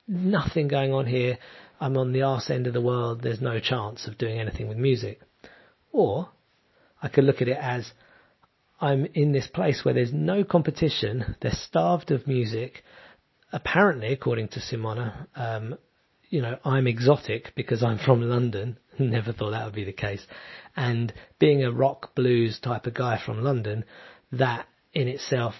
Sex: male